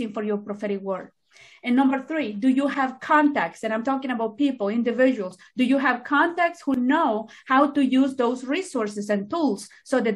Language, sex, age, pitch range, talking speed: English, female, 40-59, 225-280 Hz, 190 wpm